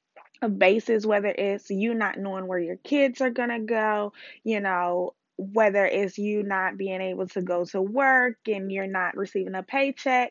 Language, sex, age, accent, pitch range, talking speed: English, female, 20-39, American, 205-255 Hz, 185 wpm